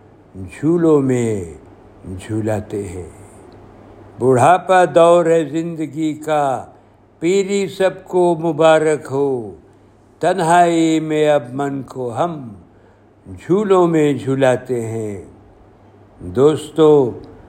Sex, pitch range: male, 105-160 Hz